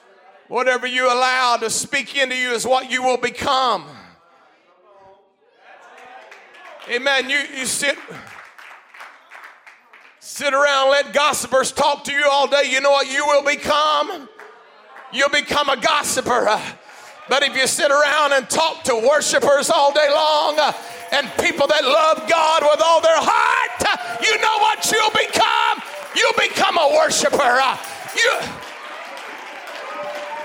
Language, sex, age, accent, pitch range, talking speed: English, male, 40-59, American, 260-320 Hz, 130 wpm